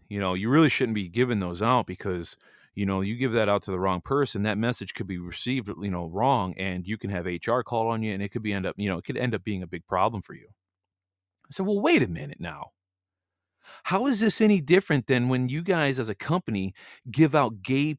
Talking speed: 255 wpm